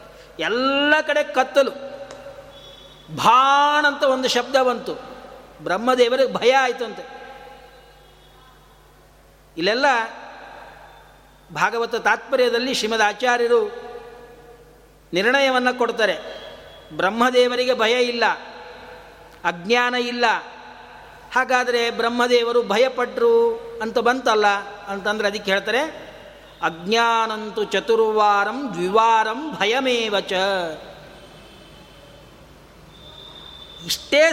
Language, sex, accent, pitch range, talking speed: Kannada, male, native, 215-270 Hz, 65 wpm